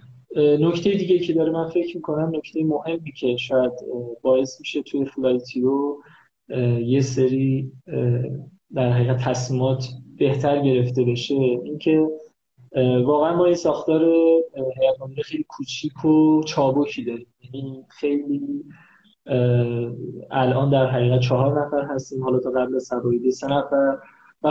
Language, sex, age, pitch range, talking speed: Persian, male, 20-39, 125-155 Hz, 120 wpm